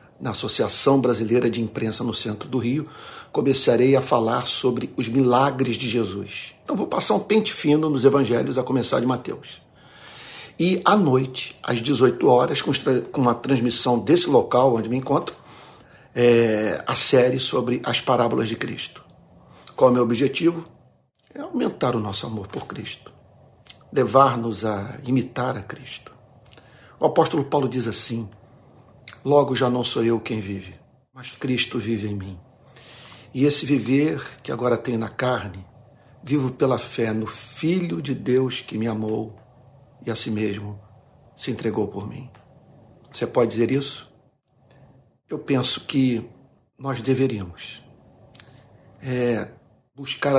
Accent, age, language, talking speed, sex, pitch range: Brazilian, 50-69, Portuguese, 140 wpm, male, 115-135 Hz